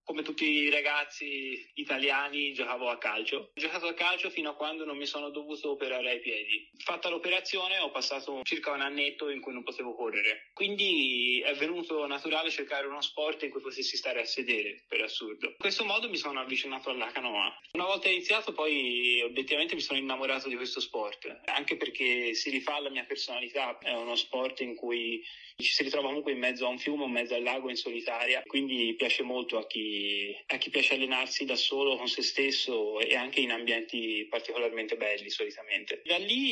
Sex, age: male, 20-39